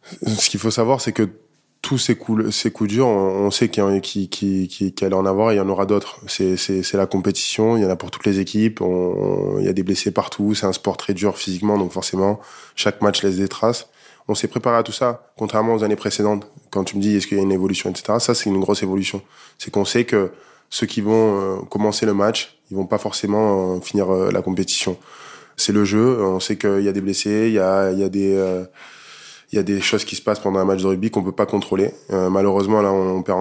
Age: 20-39